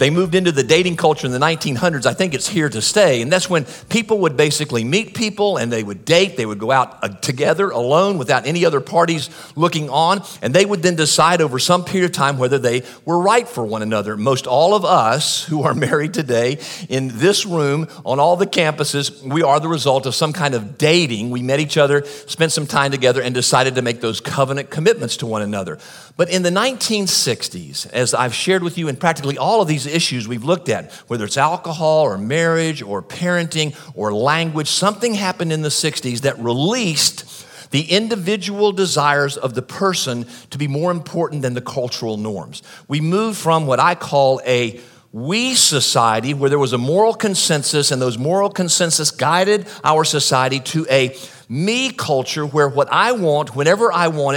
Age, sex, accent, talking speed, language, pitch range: 50-69, male, American, 200 wpm, English, 135-175 Hz